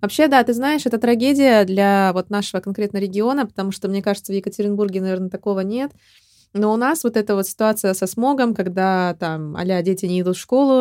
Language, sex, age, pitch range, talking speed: Russian, female, 20-39, 185-225 Hz, 205 wpm